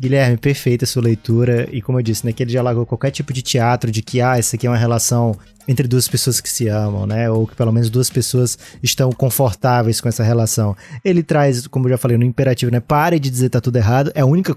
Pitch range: 120-155 Hz